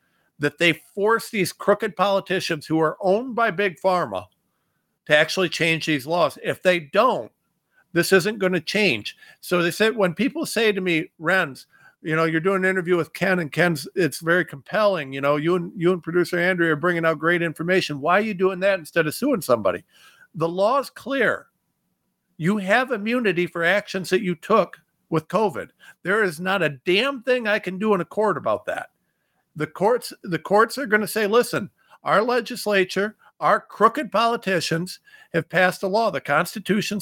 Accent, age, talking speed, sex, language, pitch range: American, 50-69, 190 wpm, male, English, 165-210 Hz